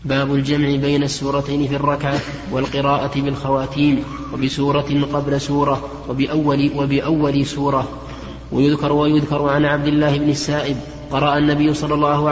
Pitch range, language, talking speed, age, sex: 140-150 Hz, Arabic, 120 wpm, 20-39, male